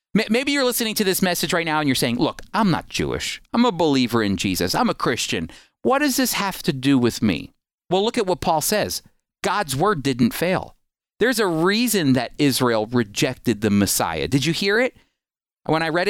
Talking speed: 210 wpm